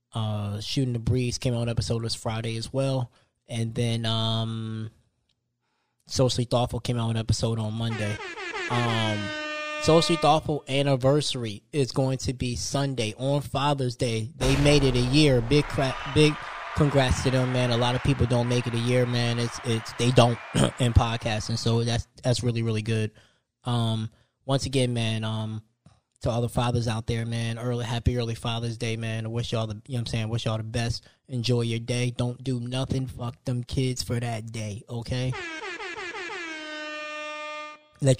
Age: 20-39